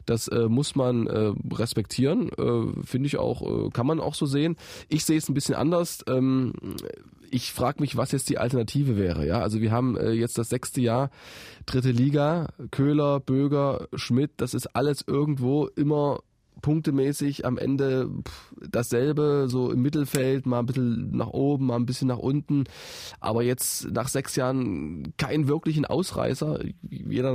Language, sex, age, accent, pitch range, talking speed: German, male, 20-39, German, 115-140 Hz, 170 wpm